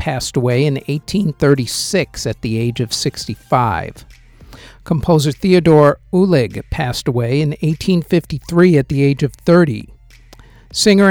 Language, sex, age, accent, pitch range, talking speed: English, male, 50-69, American, 115-155 Hz, 120 wpm